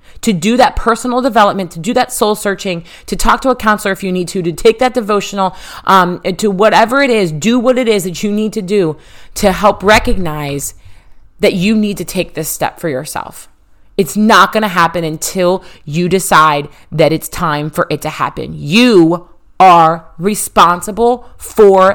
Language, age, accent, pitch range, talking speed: English, 30-49, American, 160-205 Hz, 190 wpm